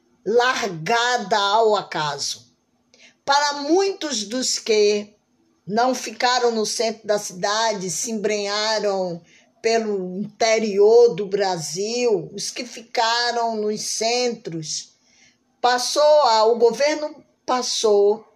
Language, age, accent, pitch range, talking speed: Portuguese, 10-29, Brazilian, 200-245 Hz, 90 wpm